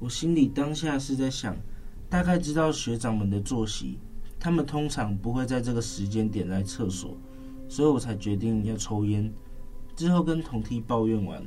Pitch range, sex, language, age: 100-125 Hz, male, Chinese, 20-39